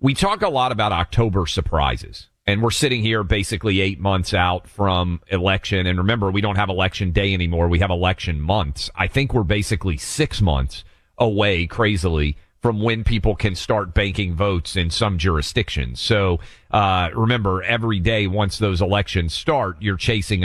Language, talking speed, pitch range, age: English, 170 wpm, 90-110 Hz, 40-59